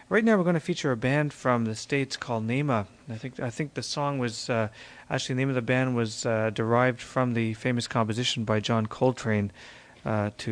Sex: male